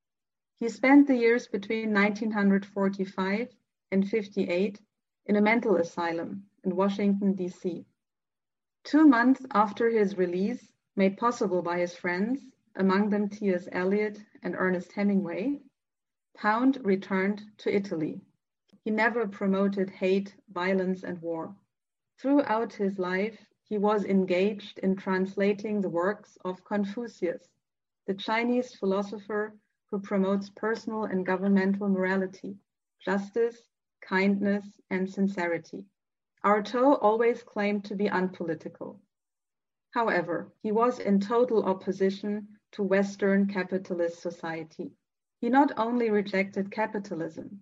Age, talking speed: 30-49, 110 wpm